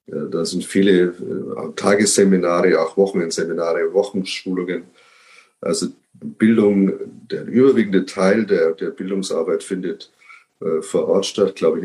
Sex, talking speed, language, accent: male, 115 wpm, German, German